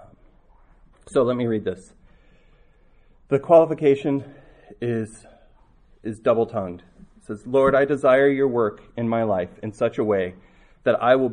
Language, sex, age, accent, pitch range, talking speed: English, male, 30-49, American, 95-120 Hz, 145 wpm